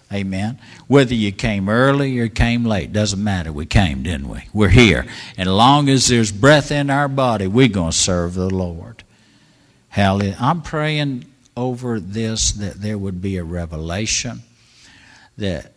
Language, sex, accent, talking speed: English, male, American, 160 wpm